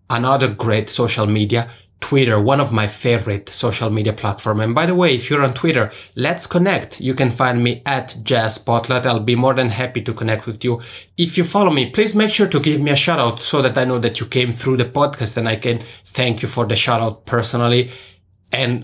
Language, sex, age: English, male, 30-49